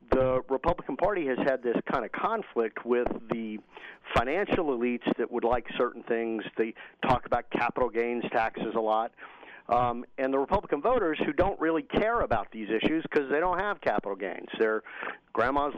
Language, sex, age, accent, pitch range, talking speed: English, male, 50-69, American, 120-155 Hz, 175 wpm